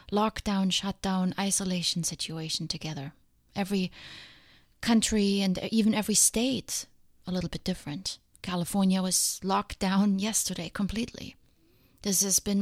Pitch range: 180-210 Hz